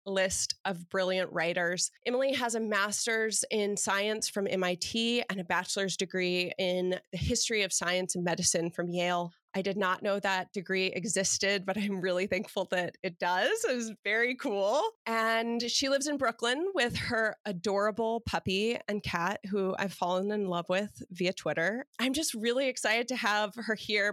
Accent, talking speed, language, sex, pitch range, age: American, 175 wpm, English, female, 190-225 Hz, 30-49